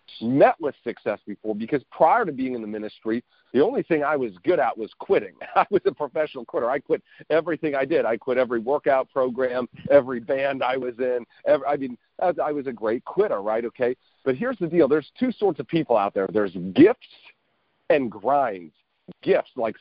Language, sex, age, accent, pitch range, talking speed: English, male, 50-69, American, 125-180 Hz, 200 wpm